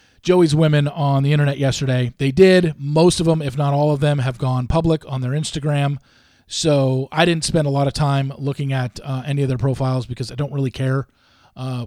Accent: American